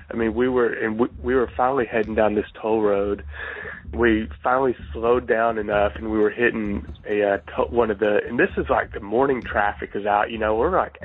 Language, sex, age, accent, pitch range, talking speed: English, male, 20-39, American, 100-115 Hz, 230 wpm